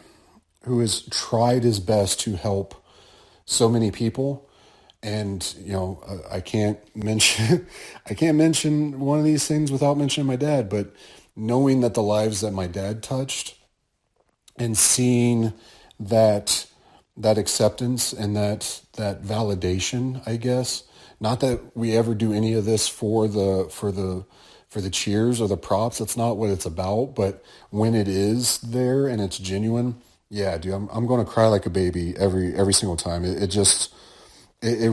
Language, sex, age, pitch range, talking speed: English, male, 40-59, 100-125 Hz, 165 wpm